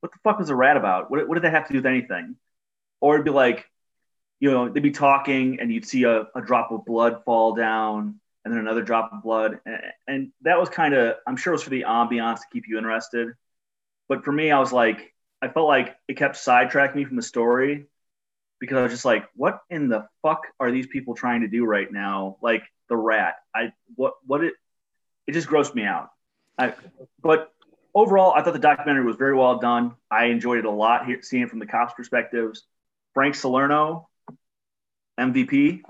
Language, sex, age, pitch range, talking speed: English, male, 30-49, 115-160 Hz, 215 wpm